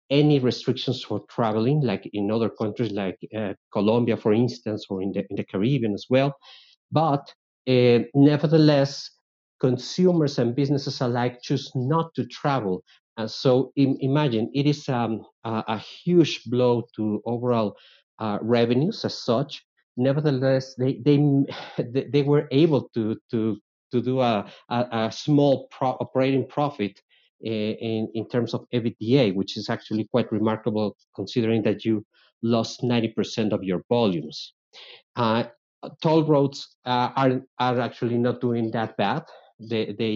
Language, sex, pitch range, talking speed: English, male, 110-135 Hz, 145 wpm